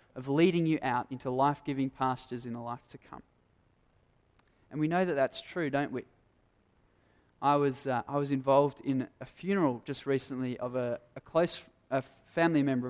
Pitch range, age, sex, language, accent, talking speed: 125-150 Hz, 20-39, male, English, Australian, 175 wpm